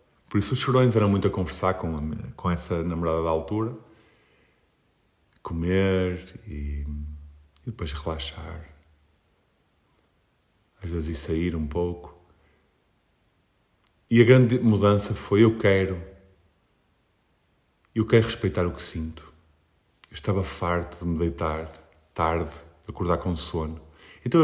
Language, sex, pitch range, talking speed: Portuguese, male, 80-115 Hz, 125 wpm